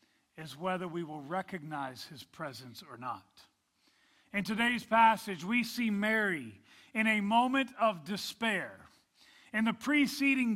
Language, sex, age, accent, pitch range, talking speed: English, male, 40-59, American, 205-265 Hz, 130 wpm